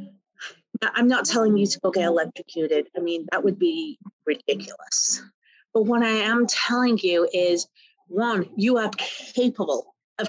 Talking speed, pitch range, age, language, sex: 150 wpm, 195-250 Hz, 30-49, English, female